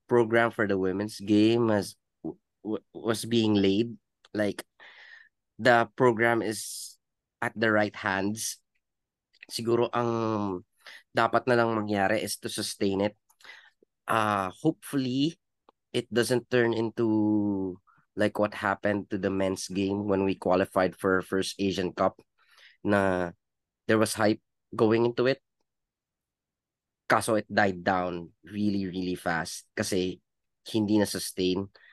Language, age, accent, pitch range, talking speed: Filipino, 20-39, native, 95-115 Hz, 125 wpm